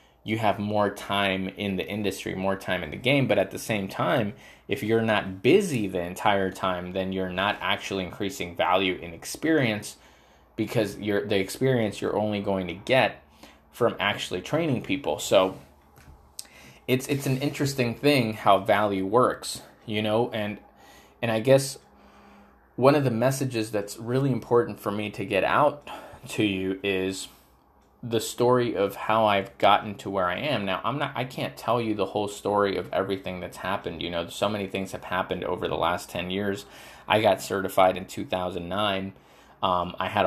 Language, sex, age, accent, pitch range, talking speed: English, male, 20-39, American, 95-110 Hz, 175 wpm